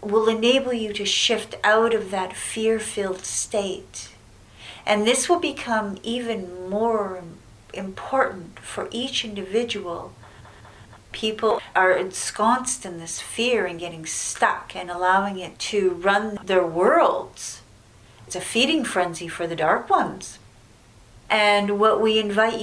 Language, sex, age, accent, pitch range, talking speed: English, female, 40-59, American, 170-225 Hz, 125 wpm